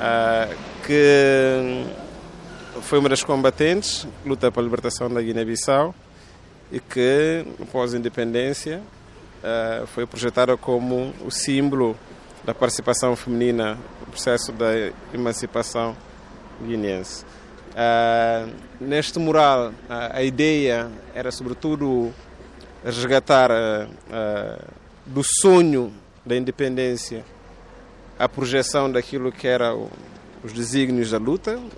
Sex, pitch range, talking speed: male, 120-145 Hz, 100 wpm